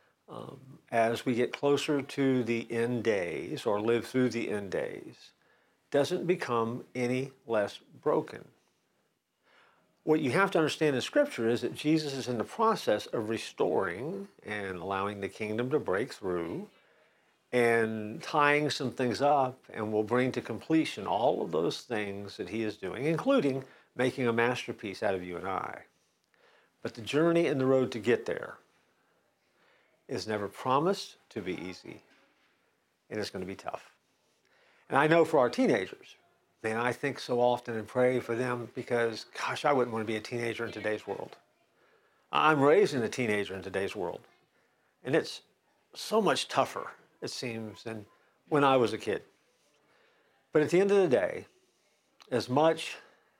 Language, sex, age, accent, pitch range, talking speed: English, male, 50-69, American, 115-145 Hz, 165 wpm